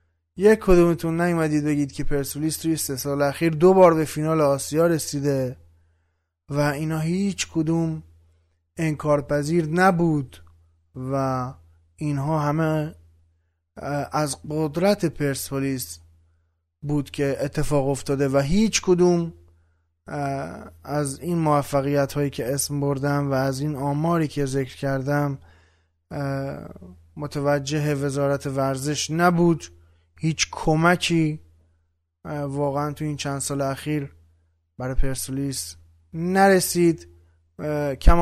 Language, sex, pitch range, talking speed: Persian, male, 90-155 Hz, 100 wpm